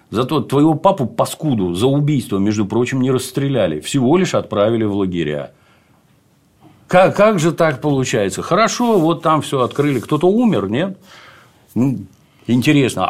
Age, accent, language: 50-69, native, Russian